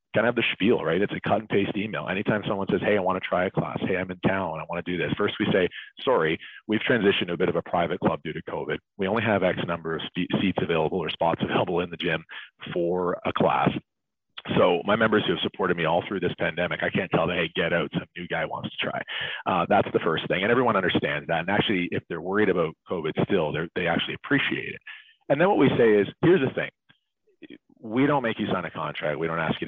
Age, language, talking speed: 40-59, English, 260 wpm